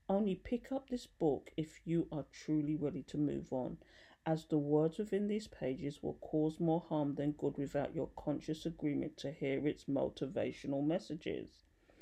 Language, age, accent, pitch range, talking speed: English, 40-59, British, 145-185 Hz, 170 wpm